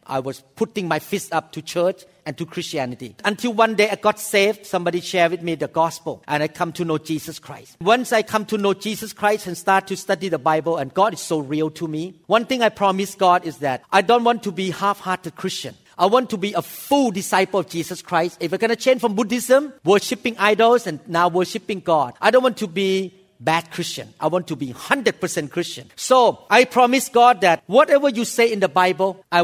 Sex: male